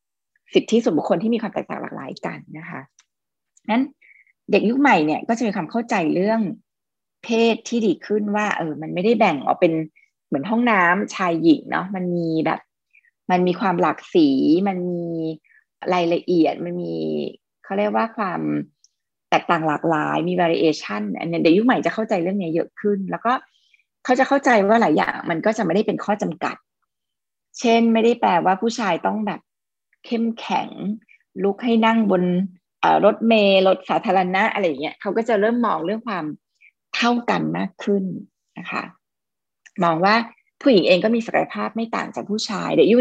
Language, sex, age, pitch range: Thai, female, 20-39, 175-230 Hz